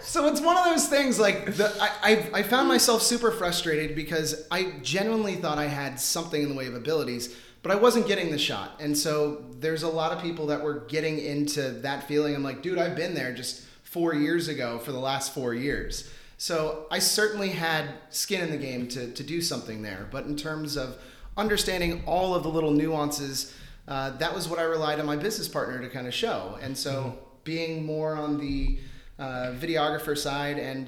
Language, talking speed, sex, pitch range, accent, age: English, 210 wpm, male, 135-170 Hz, American, 30-49